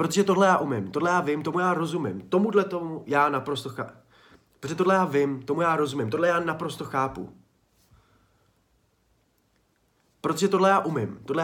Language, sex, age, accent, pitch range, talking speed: Czech, male, 30-49, native, 130-180 Hz, 165 wpm